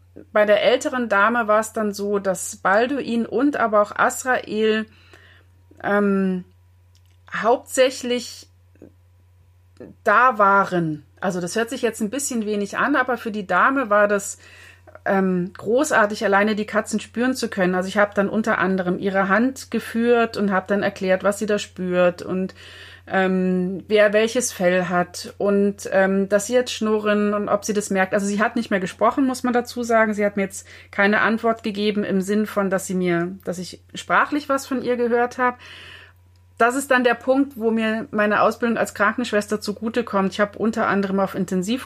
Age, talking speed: 30-49, 180 wpm